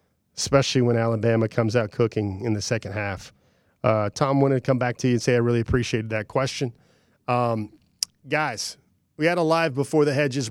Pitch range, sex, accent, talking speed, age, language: 115-135 Hz, male, American, 195 wpm, 30-49, English